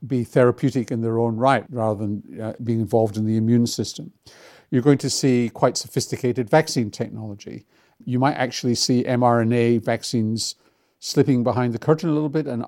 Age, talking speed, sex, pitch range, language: 50-69, 175 wpm, male, 110-130 Hz, English